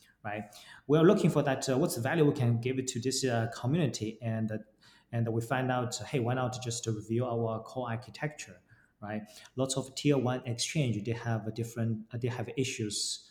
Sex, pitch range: male, 110-135 Hz